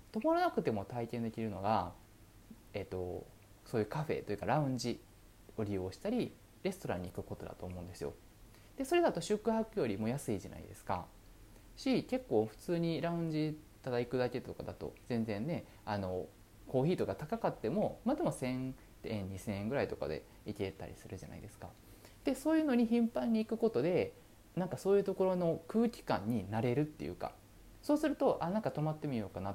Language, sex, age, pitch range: Japanese, male, 20-39, 100-165 Hz